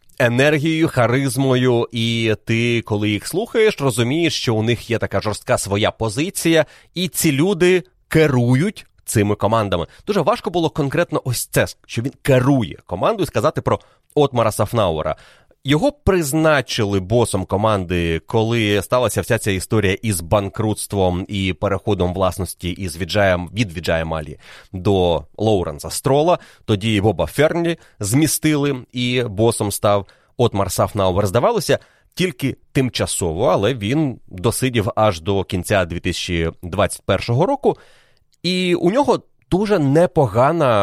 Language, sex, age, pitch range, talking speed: Ukrainian, male, 30-49, 100-135 Hz, 120 wpm